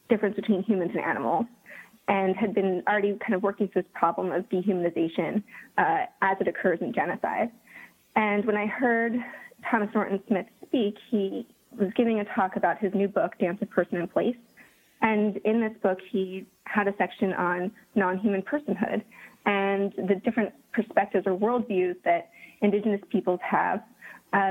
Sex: female